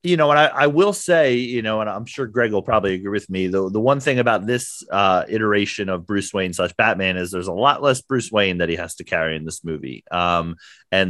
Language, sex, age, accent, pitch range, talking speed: English, male, 30-49, American, 95-130 Hz, 260 wpm